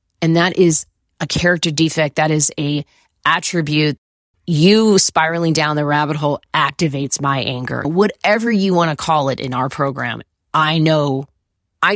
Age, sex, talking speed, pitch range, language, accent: 30-49, female, 155 wpm, 145-180 Hz, English, American